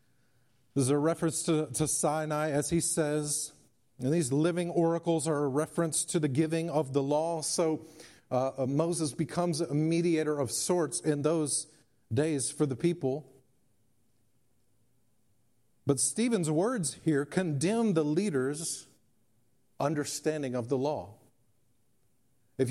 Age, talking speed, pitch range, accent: 50-69, 130 wpm, 125-175 Hz, American